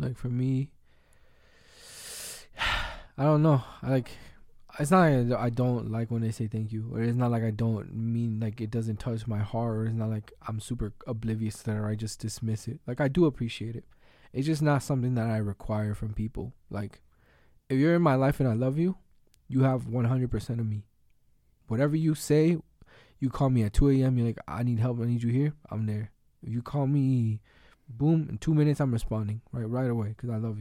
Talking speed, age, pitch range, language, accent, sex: 215 wpm, 20-39, 110-135 Hz, English, American, male